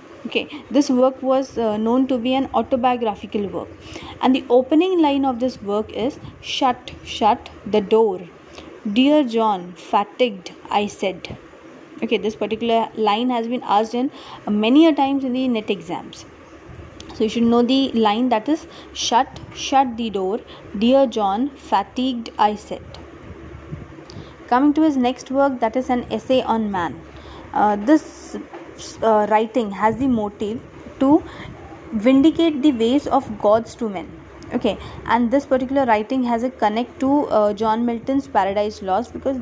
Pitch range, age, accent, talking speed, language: 215-270 Hz, 20-39, Indian, 155 wpm, English